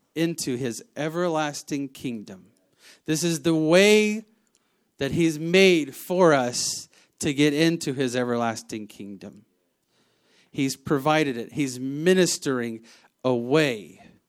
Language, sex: English, male